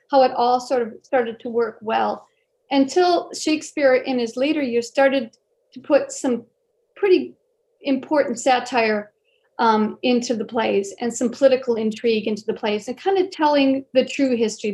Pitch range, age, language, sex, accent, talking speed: 230-275 Hz, 40-59, English, female, American, 165 wpm